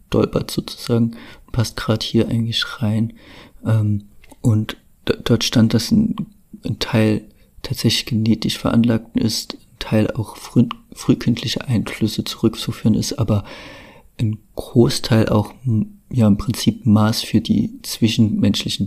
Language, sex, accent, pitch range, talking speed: German, male, German, 105-115 Hz, 115 wpm